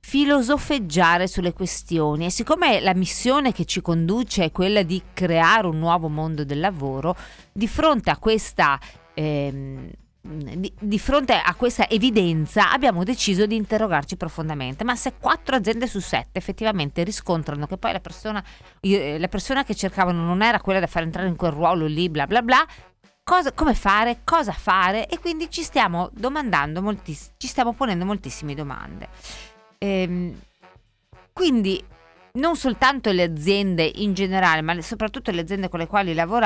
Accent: native